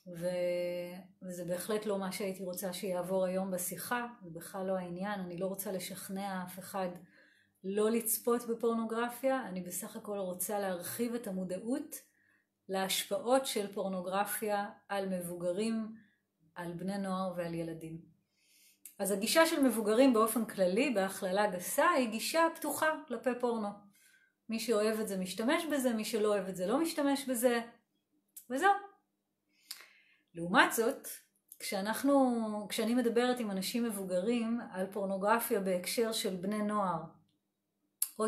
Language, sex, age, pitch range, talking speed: Hebrew, female, 30-49, 190-240 Hz, 125 wpm